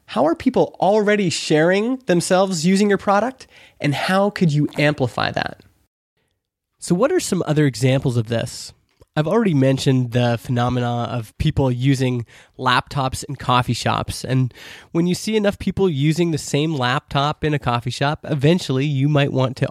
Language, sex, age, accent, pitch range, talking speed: English, male, 20-39, American, 125-160 Hz, 165 wpm